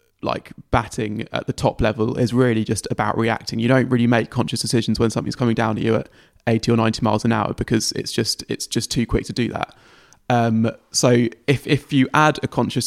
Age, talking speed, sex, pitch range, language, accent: 20-39, 225 wpm, male, 110-125 Hz, English, British